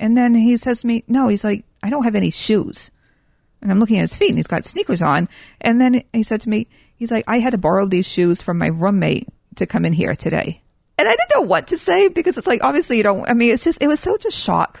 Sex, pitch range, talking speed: female, 185-240 Hz, 280 wpm